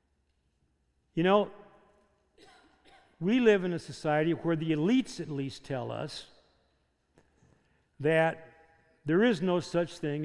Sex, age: male, 60-79